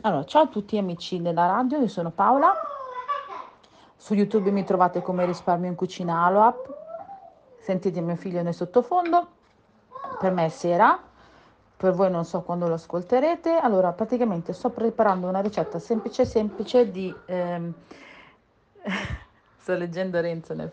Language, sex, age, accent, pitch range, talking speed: Italian, female, 40-59, native, 175-225 Hz, 145 wpm